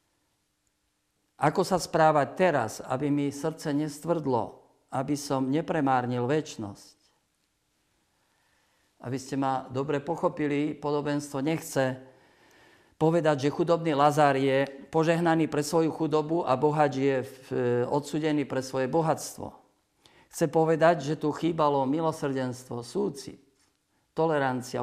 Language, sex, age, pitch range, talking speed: Slovak, male, 50-69, 130-155 Hz, 105 wpm